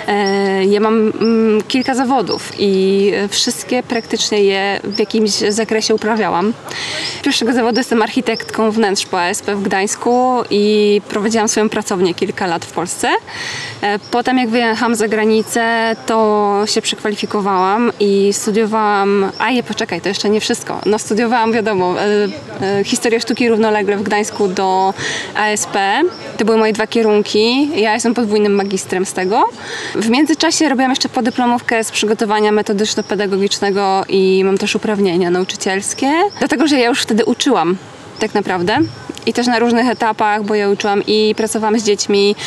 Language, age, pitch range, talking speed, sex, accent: Polish, 20-39, 200-230 Hz, 145 wpm, female, native